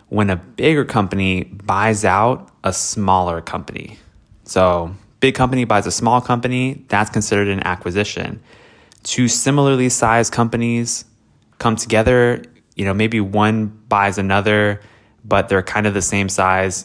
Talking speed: 140 wpm